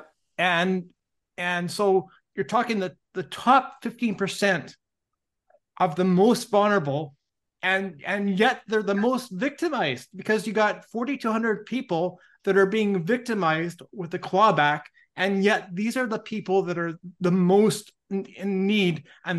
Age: 30-49